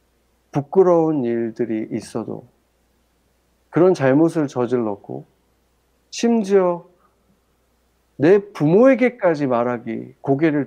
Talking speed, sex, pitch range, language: 60 wpm, male, 105-165 Hz, English